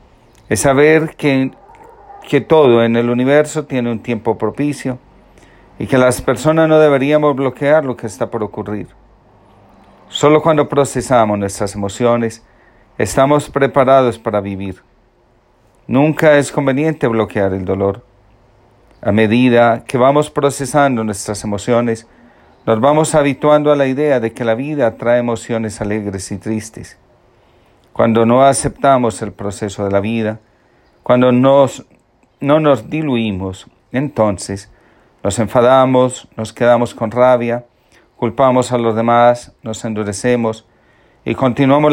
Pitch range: 110-135 Hz